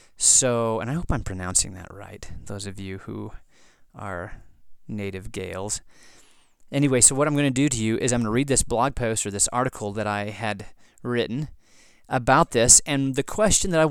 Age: 30-49